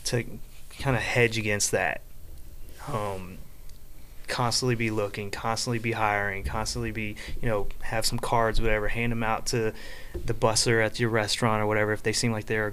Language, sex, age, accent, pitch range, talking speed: English, male, 20-39, American, 105-120 Hz, 180 wpm